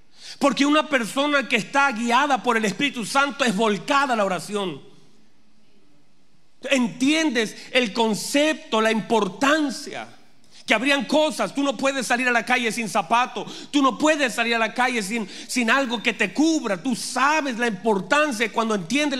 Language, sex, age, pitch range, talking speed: Spanish, male, 40-59, 225-275 Hz, 160 wpm